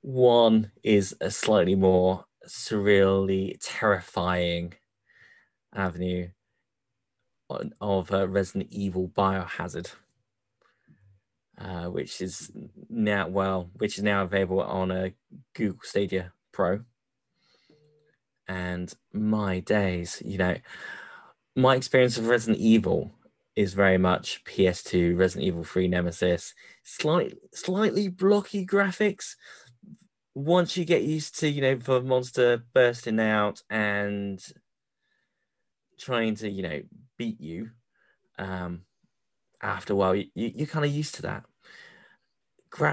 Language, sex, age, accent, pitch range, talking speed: English, male, 20-39, British, 95-130 Hz, 110 wpm